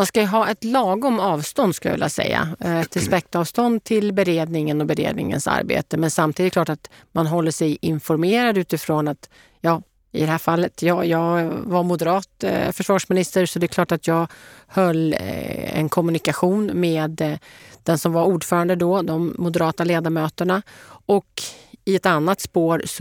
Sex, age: female, 40-59